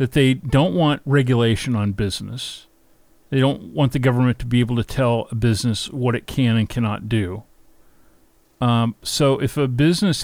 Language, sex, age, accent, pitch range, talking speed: English, male, 50-69, American, 120-140 Hz, 175 wpm